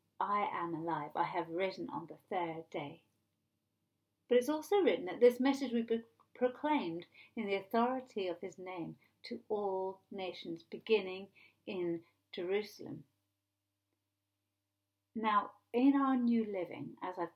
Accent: British